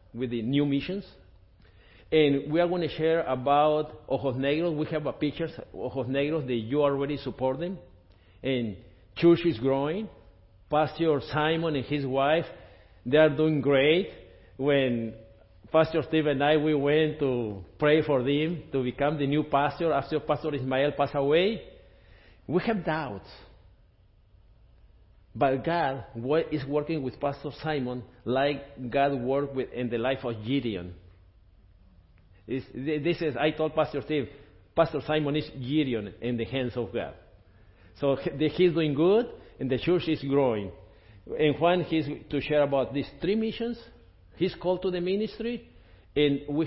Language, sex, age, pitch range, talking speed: English, male, 50-69, 110-155 Hz, 150 wpm